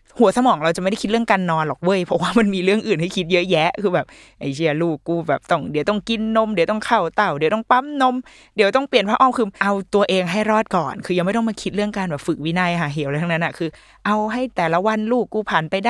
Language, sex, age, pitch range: Thai, female, 20-39, 170-225 Hz